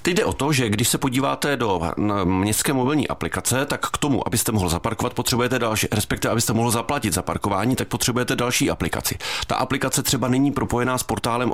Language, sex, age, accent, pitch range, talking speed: Czech, male, 40-59, native, 100-120 Hz, 195 wpm